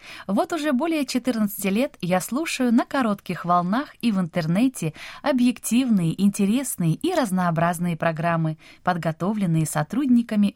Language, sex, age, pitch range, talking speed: Russian, female, 20-39, 165-250 Hz, 115 wpm